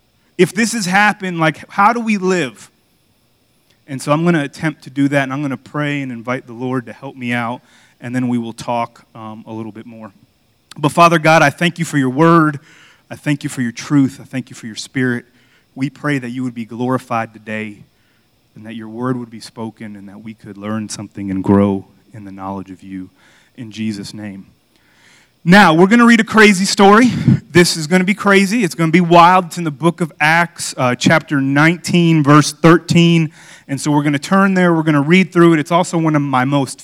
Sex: male